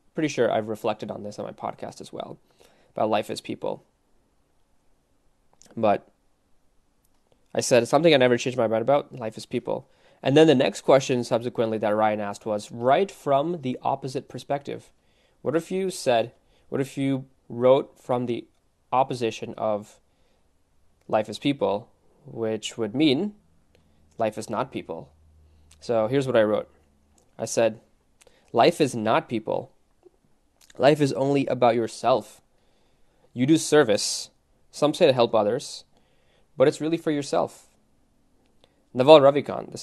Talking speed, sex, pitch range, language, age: 145 wpm, male, 105-140 Hz, English, 20-39